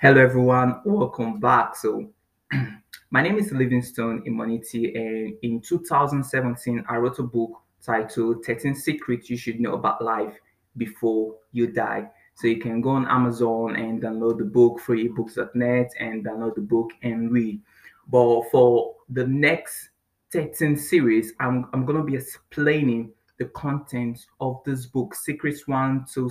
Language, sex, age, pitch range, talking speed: English, male, 20-39, 120-145 Hz, 150 wpm